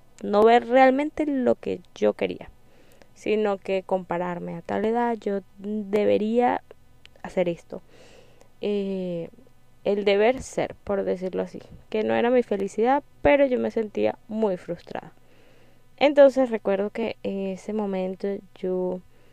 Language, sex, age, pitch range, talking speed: Spanish, female, 10-29, 180-220 Hz, 130 wpm